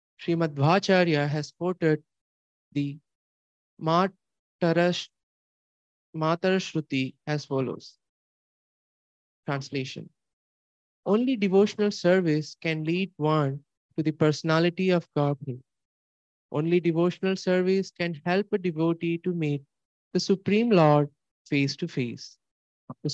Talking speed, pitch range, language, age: 90 wpm, 145-185 Hz, English, 20-39